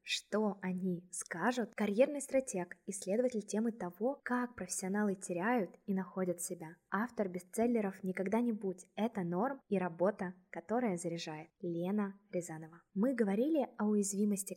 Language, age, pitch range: Russian, 20-39, 180-230 Hz